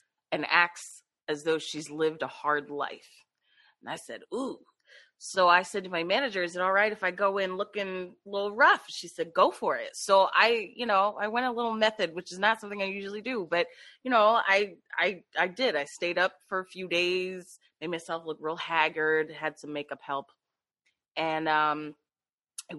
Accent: American